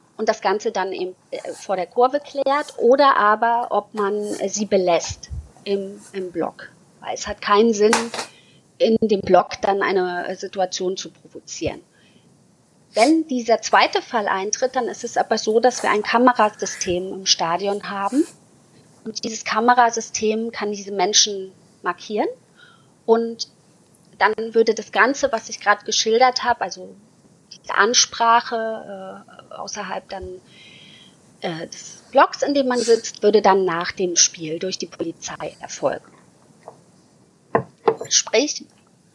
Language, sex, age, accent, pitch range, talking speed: German, female, 30-49, German, 195-245 Hz, 135 wpm